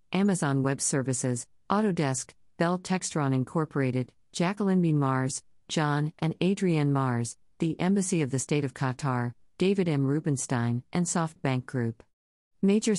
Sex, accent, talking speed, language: female, American, 130 wpm, English